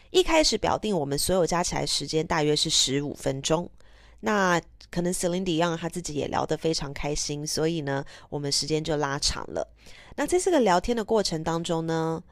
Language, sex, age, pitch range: Chinese, female, 20-39, 160-230 Hz